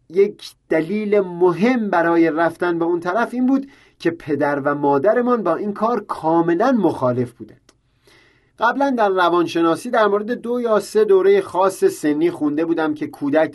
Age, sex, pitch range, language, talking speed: 30-49, male, 145-220 Hz, Persian, 155 wpm